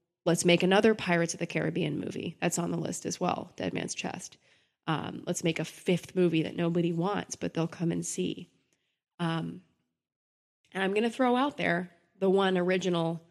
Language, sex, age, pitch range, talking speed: English, female, 20-39, 170-205 Hz, 190 wpm